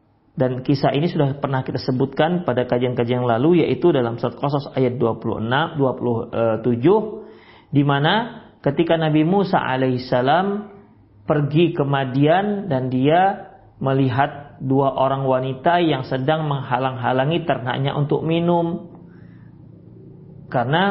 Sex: male